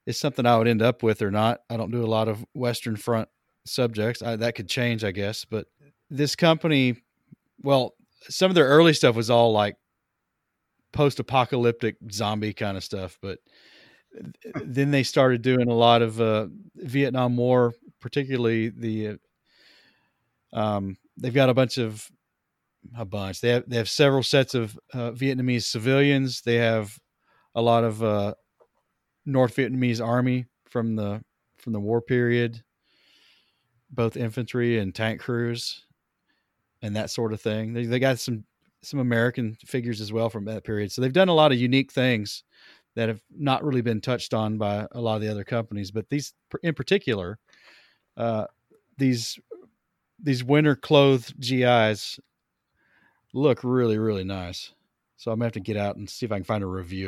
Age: 40-59